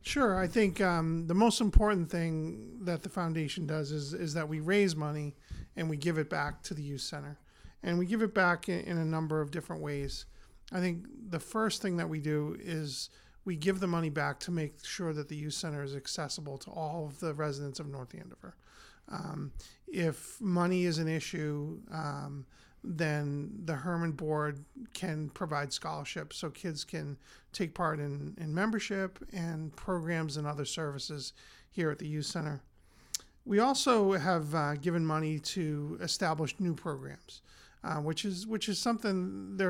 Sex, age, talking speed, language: male, 40-59, 180 wpm, English